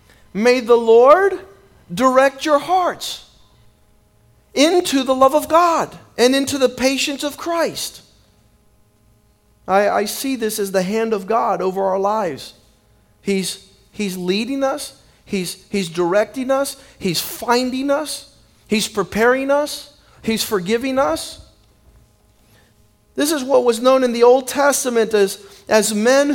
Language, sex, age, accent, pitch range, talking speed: English, male, 40-59, American, 220-290 Hz, 130 wpm